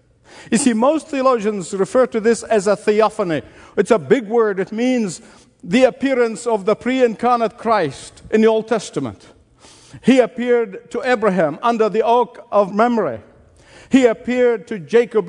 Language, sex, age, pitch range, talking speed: English, male, 50-69, 160-230 Hz, 155 wpm